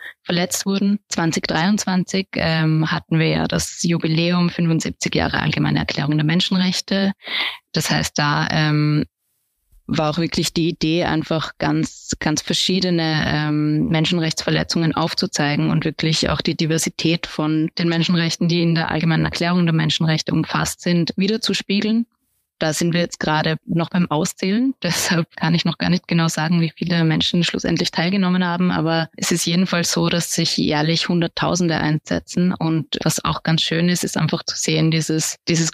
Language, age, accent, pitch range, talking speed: German, 20-39, German, 160-180 Hz, 155 wpm